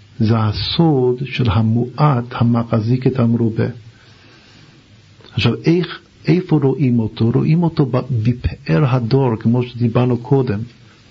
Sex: male